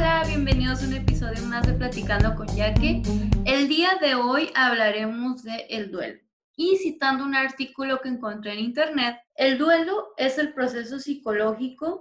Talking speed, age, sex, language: 160 wpm, 20-39, female, Spanish